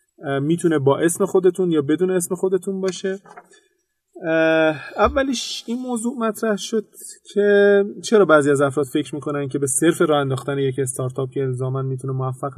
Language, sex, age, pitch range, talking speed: Persian, male, 30-49, 135-180 Hz, 155 wpm